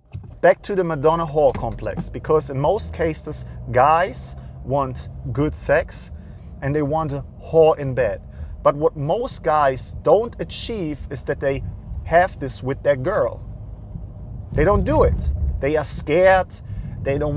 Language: English